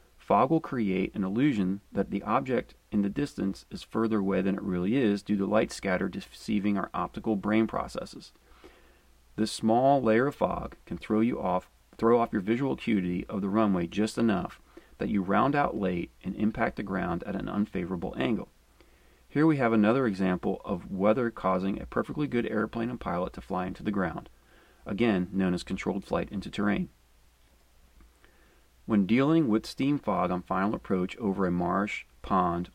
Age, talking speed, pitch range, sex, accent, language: 40-59, 180 wpm, 90-110 Hz, male, American, English